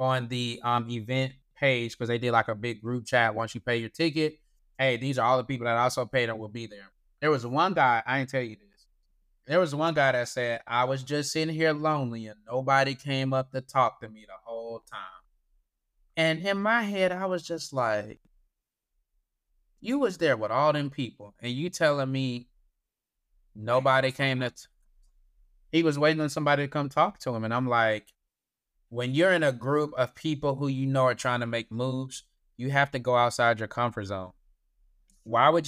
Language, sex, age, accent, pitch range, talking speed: English, male, 20-39, American, 120-150 Hz, 205 wpm